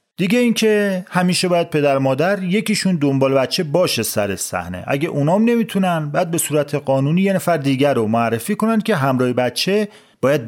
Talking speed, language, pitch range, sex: 170 wpm, English, 125-180 Hz, male